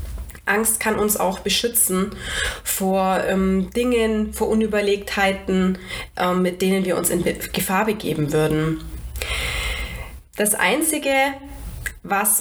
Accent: German